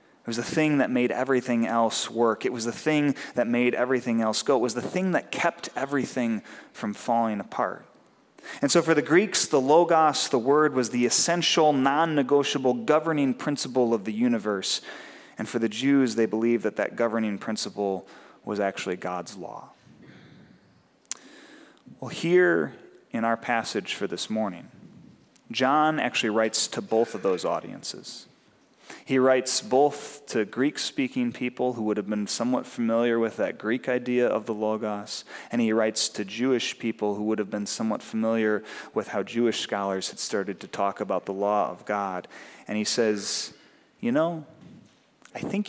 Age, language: 30-49, English